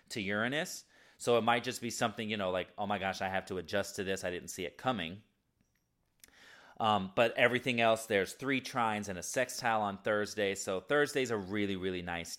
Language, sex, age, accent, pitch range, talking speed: English, male, 30-49, American, 100-135 Hz, 210 wpm